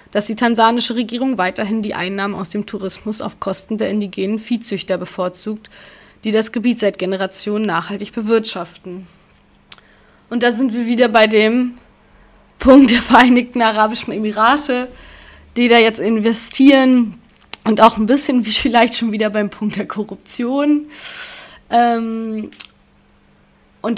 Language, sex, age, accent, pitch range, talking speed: German, female, 20-39, German, 200-230 Hz, 135 wpm